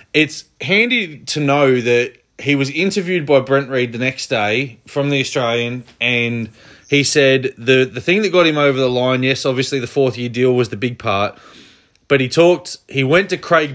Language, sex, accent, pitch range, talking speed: English, male, Australian, 125-150 Hz, 200 wpm